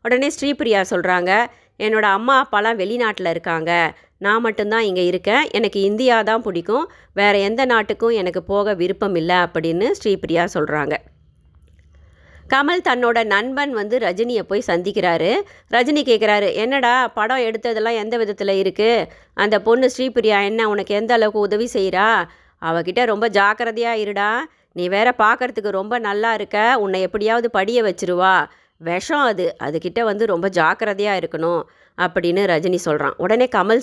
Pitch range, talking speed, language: 180-235 Hz, 135 wpm, Tamil